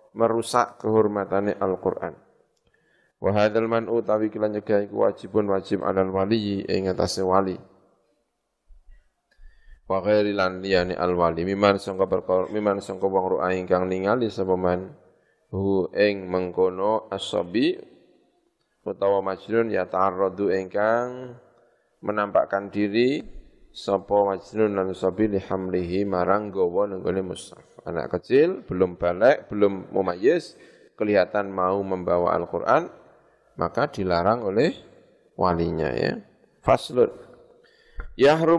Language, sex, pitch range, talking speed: Indonesian, male, 95-115 Hz, 100 wpm